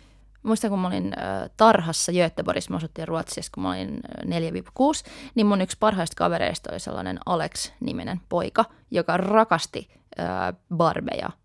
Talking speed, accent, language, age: 125 wpm, native, Finnish, 20-39